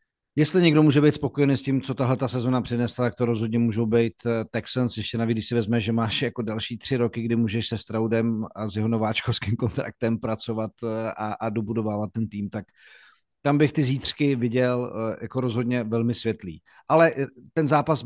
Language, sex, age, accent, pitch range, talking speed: Czech, male, 50-69, native, 115-150 Hz, 185 wpm